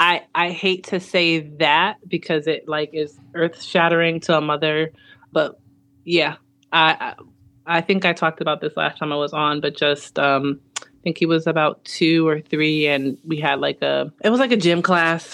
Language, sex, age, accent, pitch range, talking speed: English, female, 20-39, American, 145-175 Hz, 205 wpm